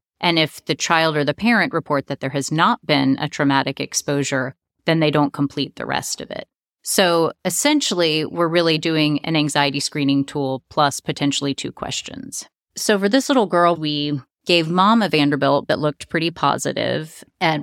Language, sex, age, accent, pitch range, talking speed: English, female, 30-49, American, 145-175 Hz, 175 wpm